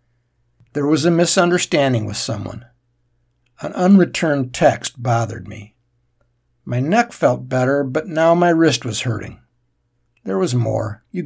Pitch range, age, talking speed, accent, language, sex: 120-170 Hz, 60-79, 135 wpm, American, English, male